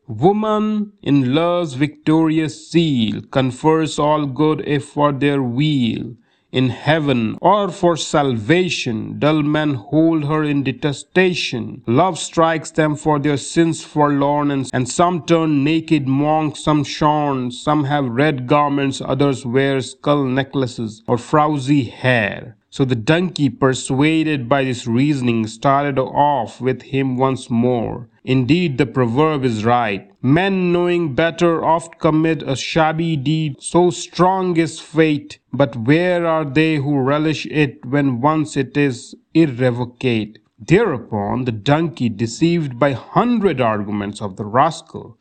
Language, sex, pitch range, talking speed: English, male, 125-155 Hz, 135 wpm